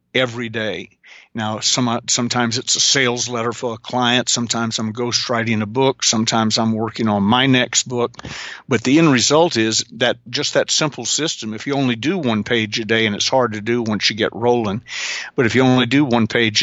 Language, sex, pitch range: English, male, 110-125 Hz